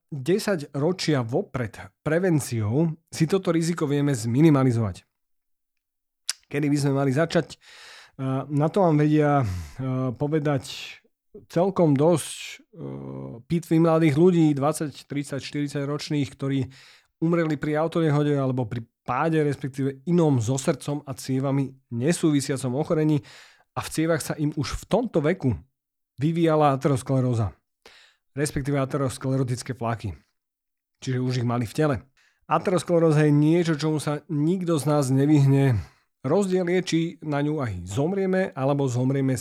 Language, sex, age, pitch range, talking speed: Slovak, male, 30-49, 130-160 Hz, 125 wpm